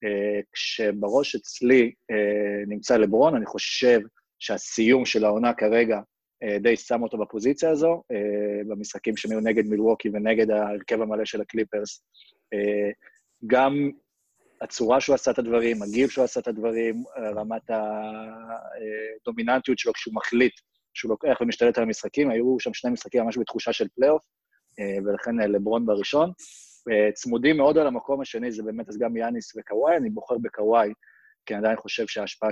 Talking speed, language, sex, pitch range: 150 wpm, Hebrew, male, 105-125 Hz